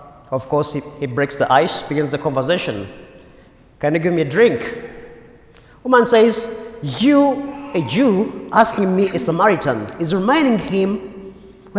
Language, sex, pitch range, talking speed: English, male, 145-215 Hz, 150 wpm